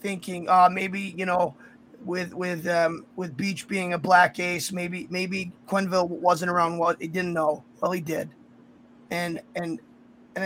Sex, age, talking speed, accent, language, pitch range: male, 20-39, 170 wpm, American, English, 165-200 Hz